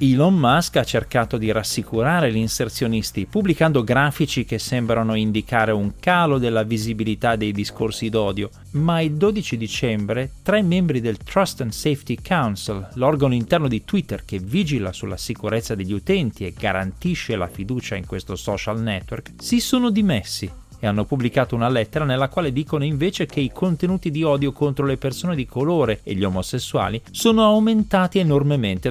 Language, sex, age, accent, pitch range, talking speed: Italian, male, 30-49, native, 105-165 Hz, 160 wpm